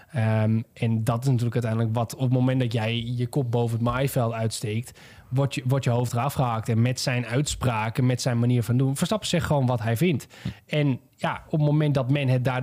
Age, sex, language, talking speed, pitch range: 20-39, male, Dutch, 235 wpm, 115-140 Hz